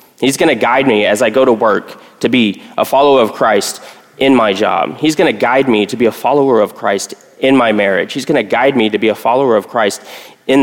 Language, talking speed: English, 235 wpm